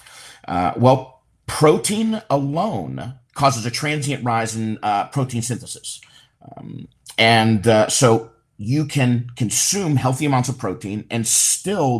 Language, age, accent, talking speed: English, 50-69, American, 125 wpm